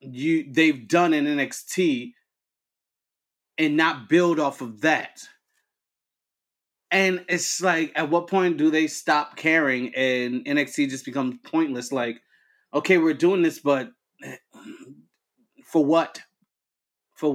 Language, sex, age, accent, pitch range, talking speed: English, male, 30-49, American, 130-180 Hz, 120 wpm